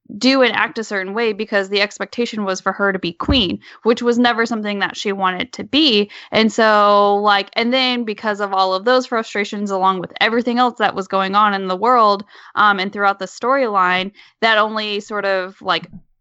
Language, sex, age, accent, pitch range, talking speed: English, female, 10-29, American, 190-225 Hz, 205 wpm